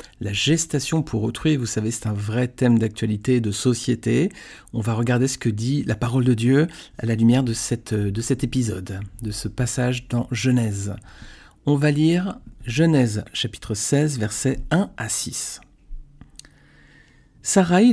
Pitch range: 105-140 Hz